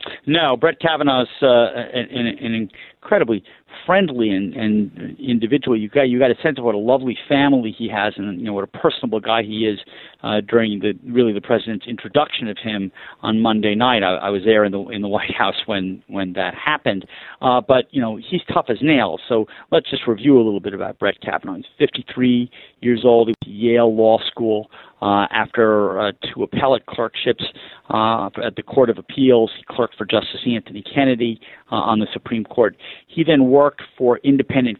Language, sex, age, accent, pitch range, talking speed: English, male, 40-59, American, 105-130 Hz, 195 wpm